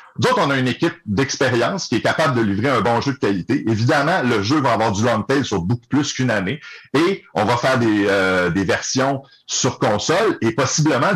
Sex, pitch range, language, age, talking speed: male, 105-140 Hz, French, 60-79, 220 wpm